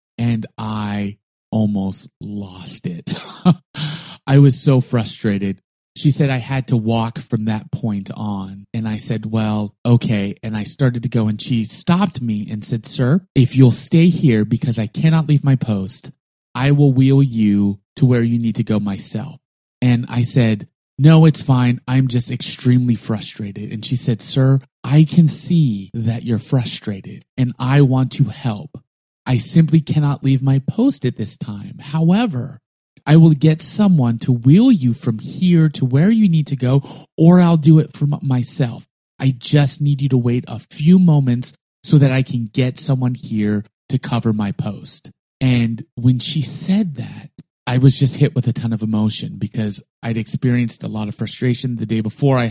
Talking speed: 180 wpm